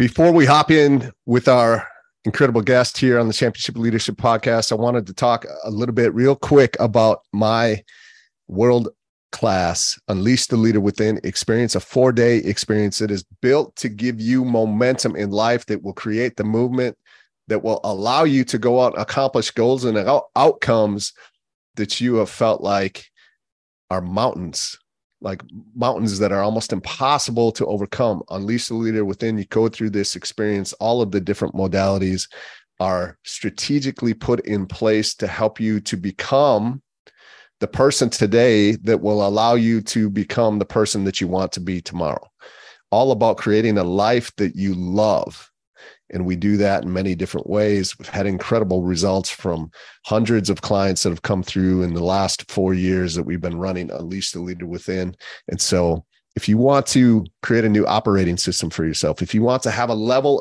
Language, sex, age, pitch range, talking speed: English, male, 30-49, 95-120 Hz, 175 wpm